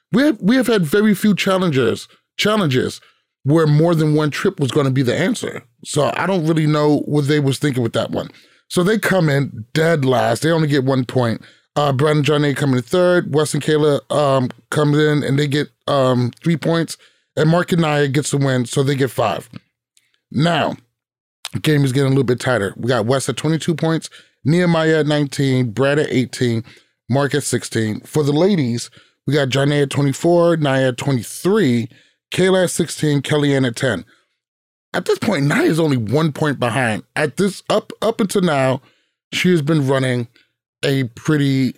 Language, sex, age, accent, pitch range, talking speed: English, male, 30-49, American, 130-160 Hz, 195 wpm